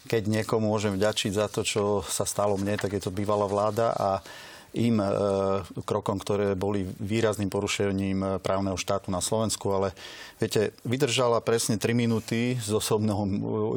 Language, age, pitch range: Slovak, 30-49, 100-110 Hz